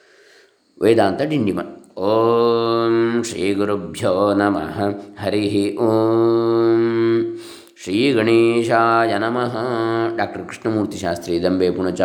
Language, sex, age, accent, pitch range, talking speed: Kannada, male, 20-39, native, 105-135 Hz, 80 wpm